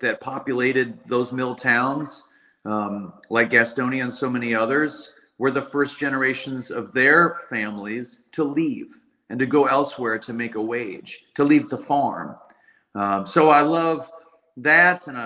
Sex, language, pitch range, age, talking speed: male, English, 110-155 Hz, 40-59, 155 wpm